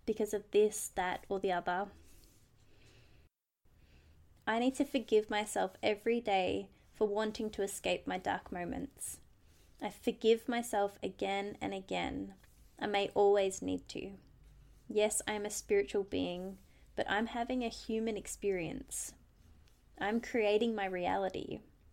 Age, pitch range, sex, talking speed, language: 20-39, 165-225 Hz, female, 130 wpm, English